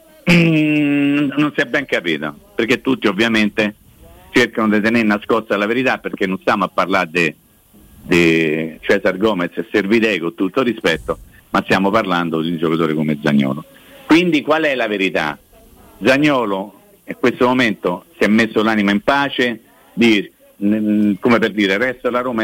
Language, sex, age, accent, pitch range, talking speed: Italian, male, 50-69, native, 100-150 Hz, 155 wpm